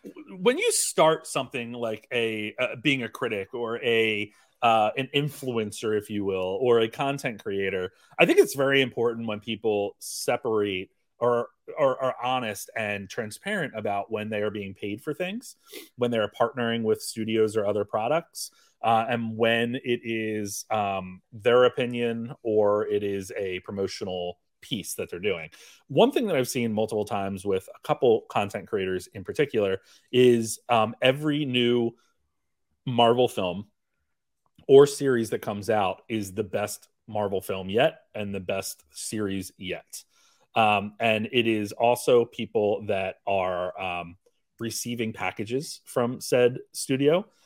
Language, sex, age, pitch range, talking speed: English, male, 30-49, 105-125 Hz, 150 wpm